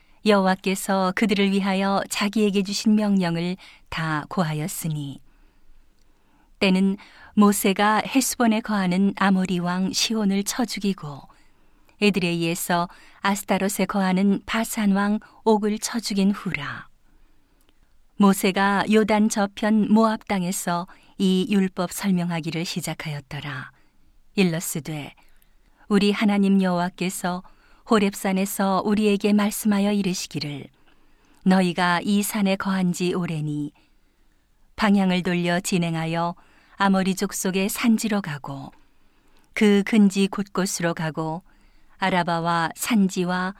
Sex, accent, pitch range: female, native, 175-205 Hz